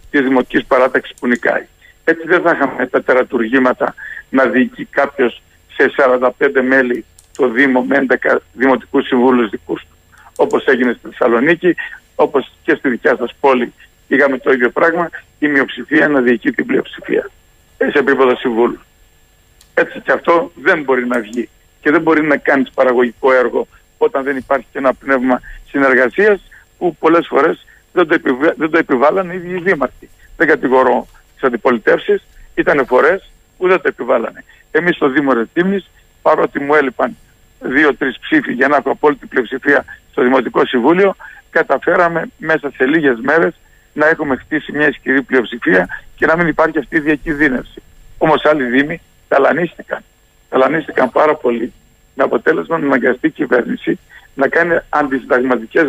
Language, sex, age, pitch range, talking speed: Greek, male, 60-79, 125-170 Hz, 150 wpm